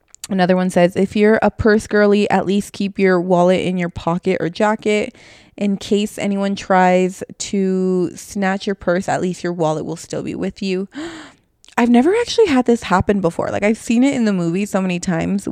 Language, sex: English, female